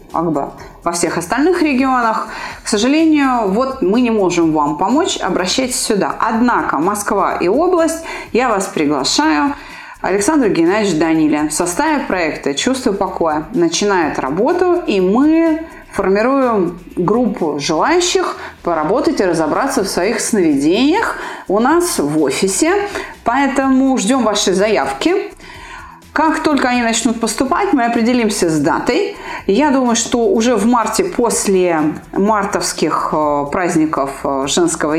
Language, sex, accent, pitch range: Russian, female, native, 195-310 Hz